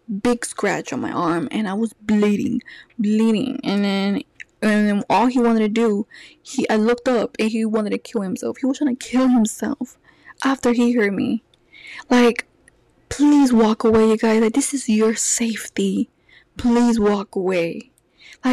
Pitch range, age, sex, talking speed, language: 210-250 Hz, 10-29, female, 175 wpm, English